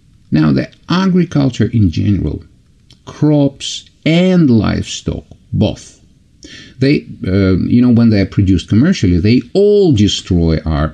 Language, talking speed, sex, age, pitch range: English, 120 wpm, male, 50-69, 90-140 Hz